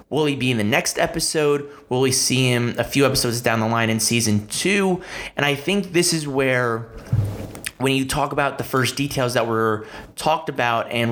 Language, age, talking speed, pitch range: English, 30-49, 205 wpm, 120-145 Hz